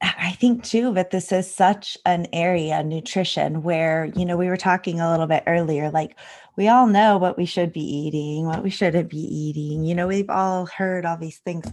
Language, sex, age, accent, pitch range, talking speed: English, female, 20-39, American, 155-185 Hz, 215 wpm